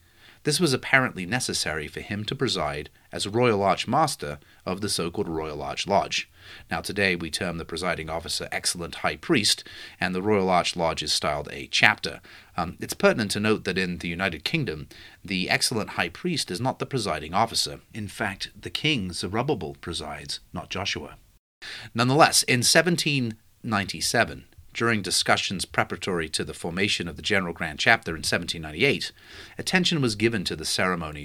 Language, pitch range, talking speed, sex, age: English, 85-115 Hz, 165 wpm, male, 30-49